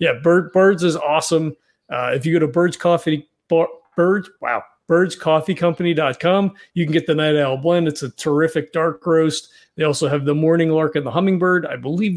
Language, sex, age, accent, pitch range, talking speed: English, male, 40-59, American, 155-185 Hz, 190 wpm